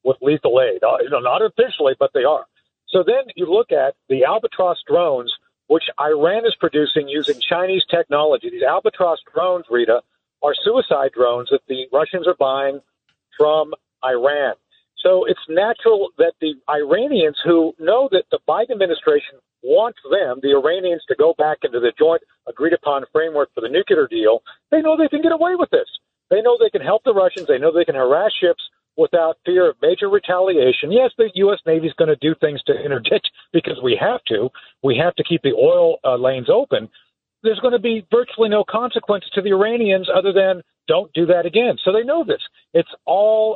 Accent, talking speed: American, 190 wpm